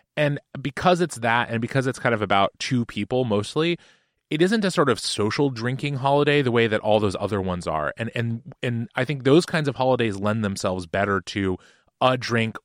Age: 30-49